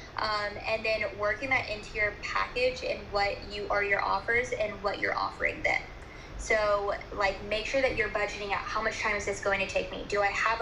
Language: English